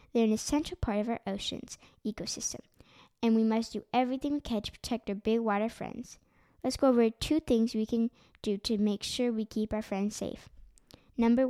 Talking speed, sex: 200 wpm, female